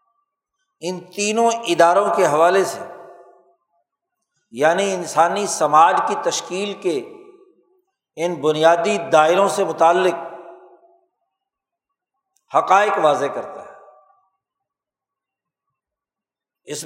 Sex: male